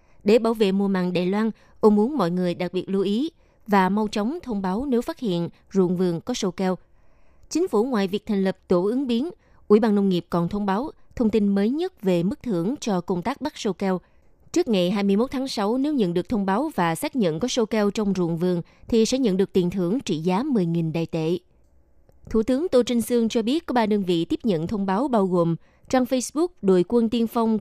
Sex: female